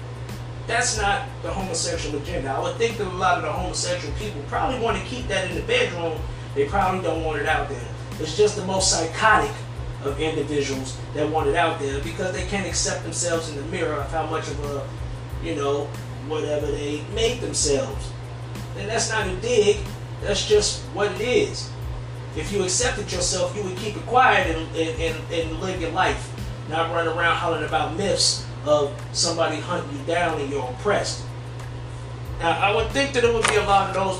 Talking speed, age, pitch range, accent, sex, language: 195 wpm, 30-49, 120-160 Hz, American, male, English